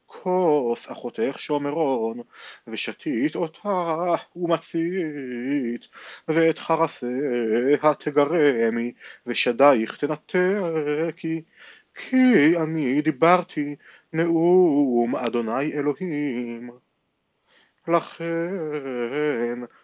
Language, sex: Hebrew, male